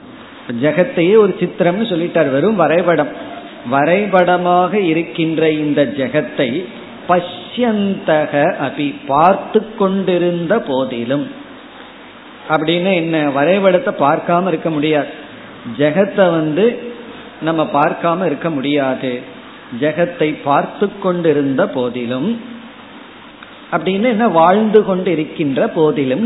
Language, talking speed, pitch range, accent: Tamil, 65 wpm, 145-220 Hz, native